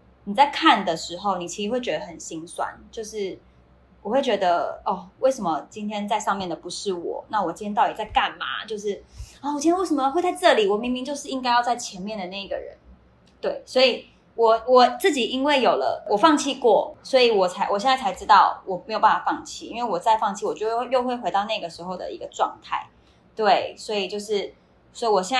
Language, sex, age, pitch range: Chinese, female, 20-39, 190-265 Hz